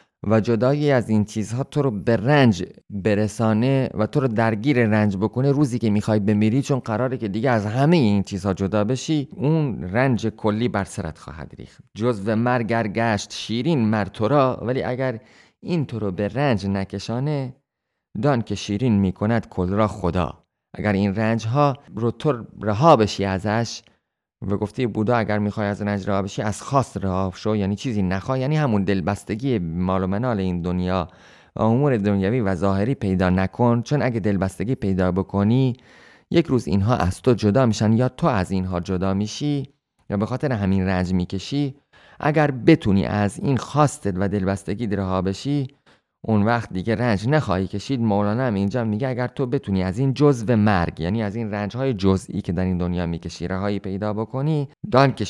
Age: 30-49